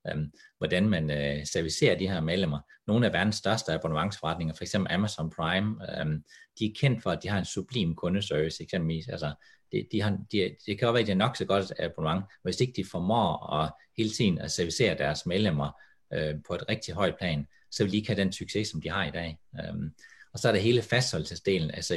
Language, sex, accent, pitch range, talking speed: English, male, Danish, 80-105 Hz, 220 wpm